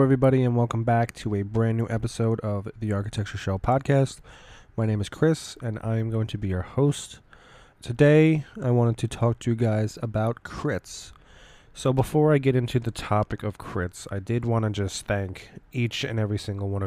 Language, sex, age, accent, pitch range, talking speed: English, male, 20-39, American, 100-120 Hz, 200 wpm